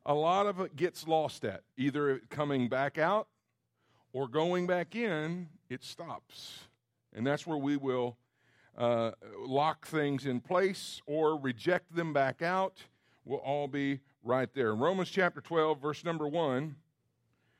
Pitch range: 120-170 Hz